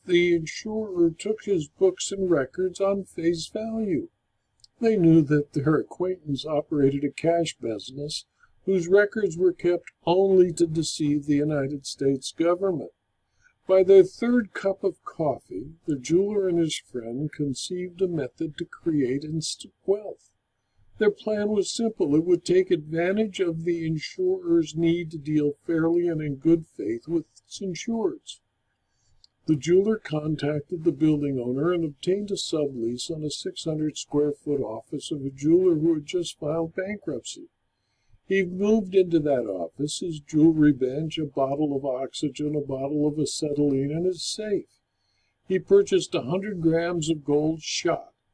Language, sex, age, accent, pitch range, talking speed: English, male, 60-79, American, 145-185 Hz, 145 wpm